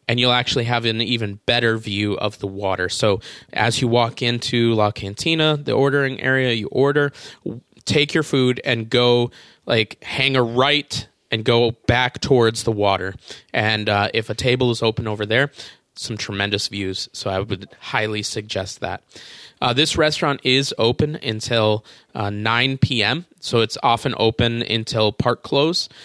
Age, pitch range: 20-39, 110-130 Hz